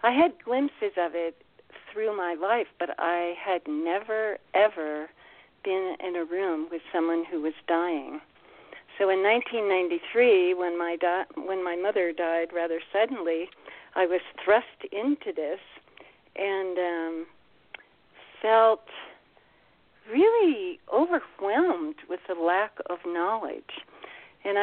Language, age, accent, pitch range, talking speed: English, 60-79, American, 170-235 Hz, 120 wpm